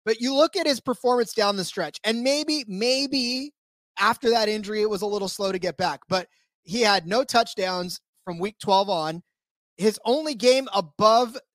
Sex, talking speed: male, 185 wpm